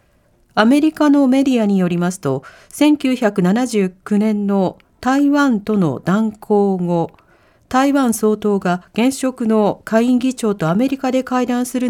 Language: Japanese